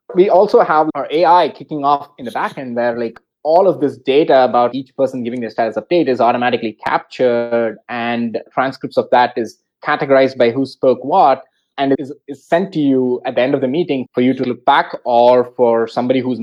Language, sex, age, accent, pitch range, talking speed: English, male, 20-39, Indian, 120-145 Hz, 215 wpm